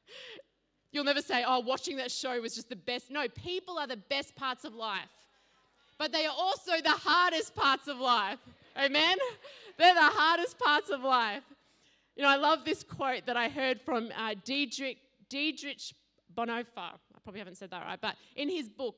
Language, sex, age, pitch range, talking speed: English, female, 20-39, 225-275 Hz, 185 wpm